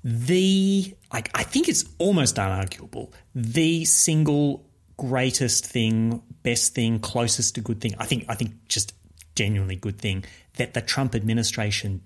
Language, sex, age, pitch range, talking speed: English, male, 30-49, 100-130 Hz, 145 wpm